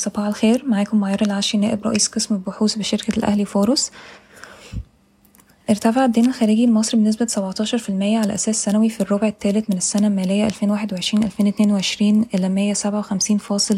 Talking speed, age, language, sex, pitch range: 120 wpm, 20-39, Arabic, female, 200-220 Hz